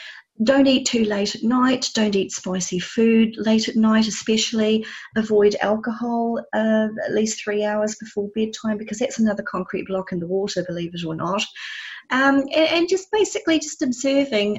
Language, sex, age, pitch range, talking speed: English, female, 30-49, 175-215 Hz, 175 wpm